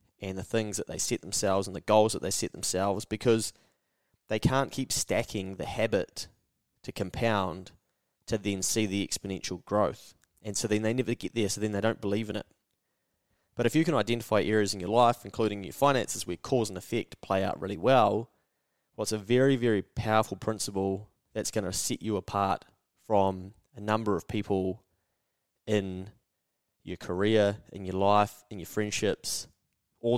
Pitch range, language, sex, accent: 95-110 Hz, English, male, Australian